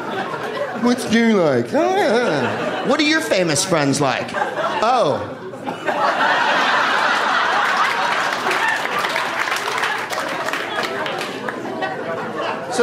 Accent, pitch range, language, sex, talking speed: American, 100-165 Hz, English, male, 60 wpm